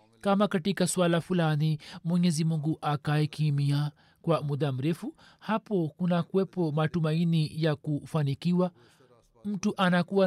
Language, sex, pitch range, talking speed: Swahili, male, 155-185 Hz, 105 wpm